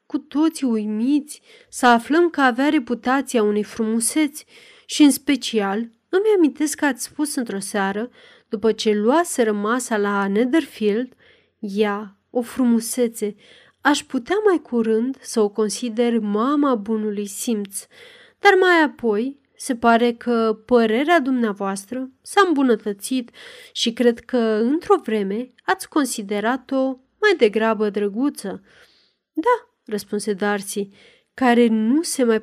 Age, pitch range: 30-49, 220-290 Hz